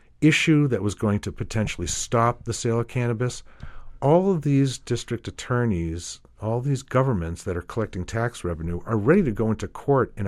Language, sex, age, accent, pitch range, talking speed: English, male, 50-69, American, 90-120 Hz, 180 wpm